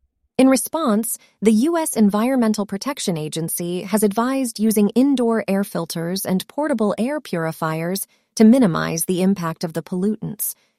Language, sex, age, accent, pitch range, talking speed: English, female, 30-49, American, 190-235 Hz, 135 wpm